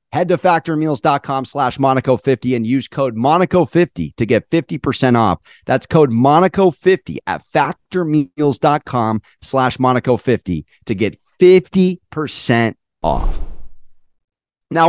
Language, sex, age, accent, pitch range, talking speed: English, male, 30-49, American, 140-185 Hz, 100 wpm